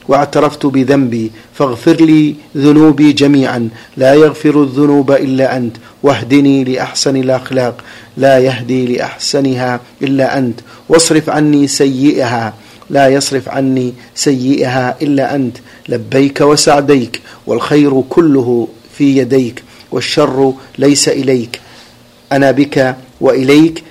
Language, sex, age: Arabic, male, 50-69